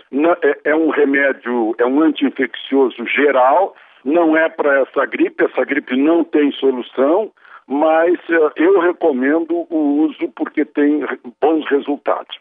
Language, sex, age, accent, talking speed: Portuguese, male, 60-79, Brazilian, 125 wpm